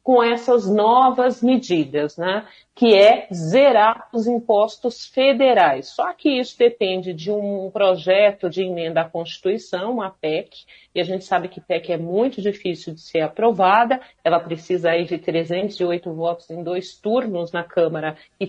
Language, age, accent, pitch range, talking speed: Portuguese, 40-59, Brazilian, 185-255 Hz, 160 wpm